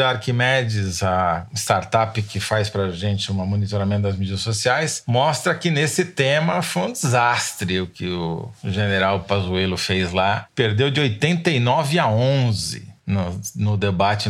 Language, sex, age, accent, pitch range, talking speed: Portuguese, male, 40-59, Brazilian, 105-140 Hz, 145 wpm